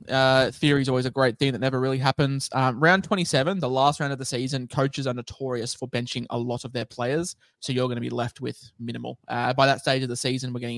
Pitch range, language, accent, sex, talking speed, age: 120-140 Hz, English, Australian, male, 260 wpm, 20-39